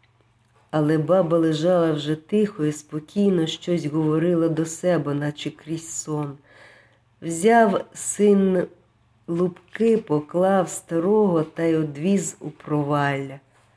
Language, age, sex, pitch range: Ukrainian, 50-69, female, 125-180 Hz